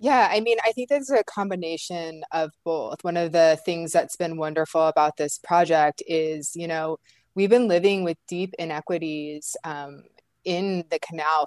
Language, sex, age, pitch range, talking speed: English, female, 20-39, 160-180 Hz, 175 wpm